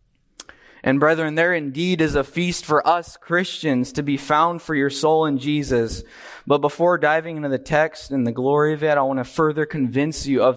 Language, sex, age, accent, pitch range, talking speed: English, male, 20-39, American, 130-165 Hz, 205 wpm